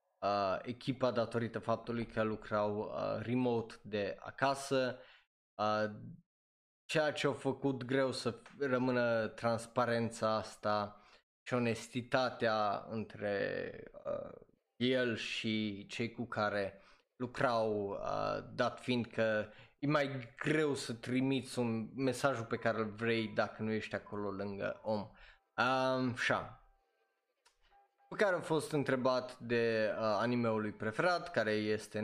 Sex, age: male, 20-39